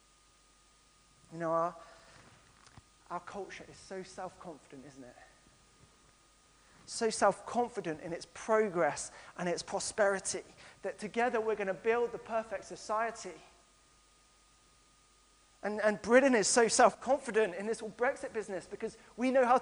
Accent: British